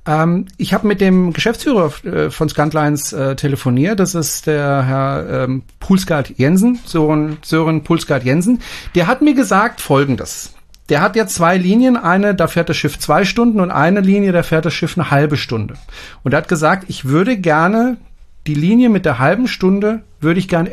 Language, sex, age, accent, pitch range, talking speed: German, male, 40-59, German, 135-195 Hz, 175 wpm